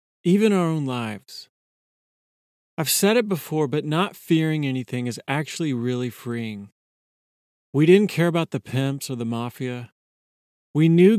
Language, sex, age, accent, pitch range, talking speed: English, male, 40-59, American, 120-170 Hz, 145 wpm